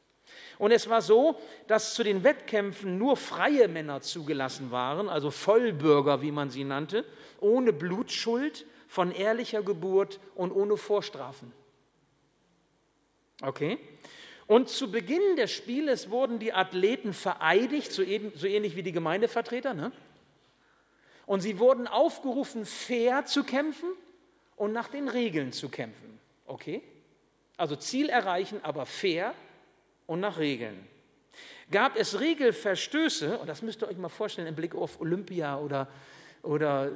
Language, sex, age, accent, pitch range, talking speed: German, male, 50-69, German, 175-260 Hz, 135 wpm